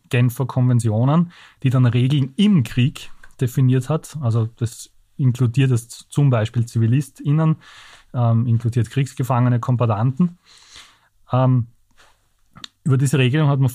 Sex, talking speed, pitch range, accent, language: male, 115 wpm, 120-145 Hz, Austrian, German